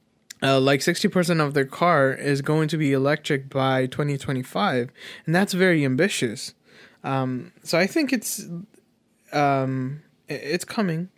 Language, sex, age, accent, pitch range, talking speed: English, male, 20-39, American, 135-170 Hz, 135 wpm